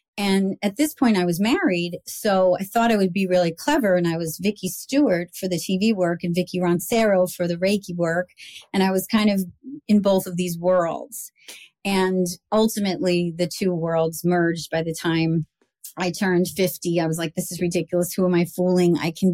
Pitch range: 170-200 Hz